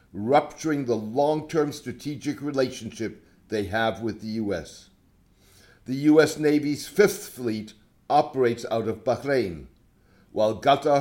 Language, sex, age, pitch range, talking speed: English, male, 60-79, 110-155 Hz, 115 wpm